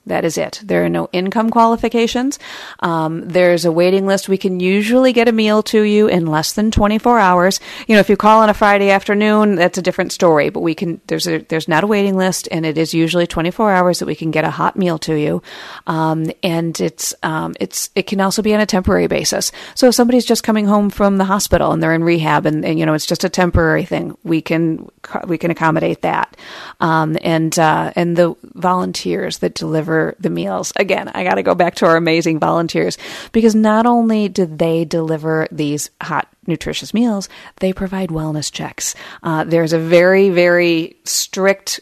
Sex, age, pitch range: female, 40-59, 160-195 Hz